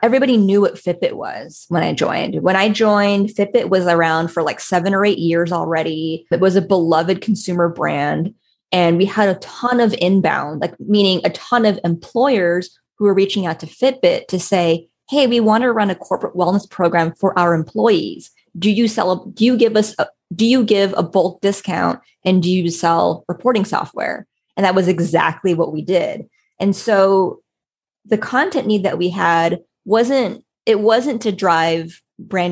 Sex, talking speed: female, 190 wpm